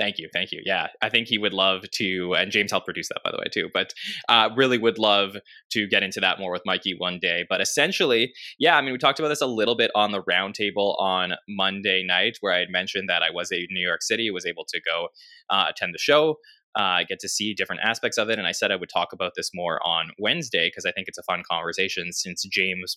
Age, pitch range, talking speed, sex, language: 20-39, 95-130 Hz, 260 wpm, male, English